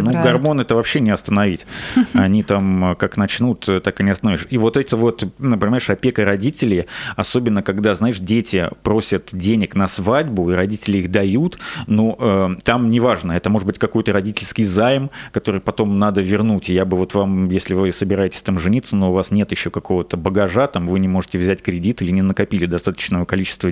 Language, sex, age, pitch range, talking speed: Russian, male, 30-49, 100-120 Hz, 190 wpm